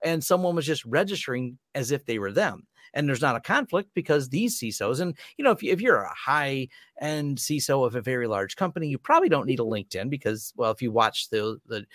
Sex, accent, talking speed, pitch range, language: male, American, 235 wpm, 115-170 Hz, English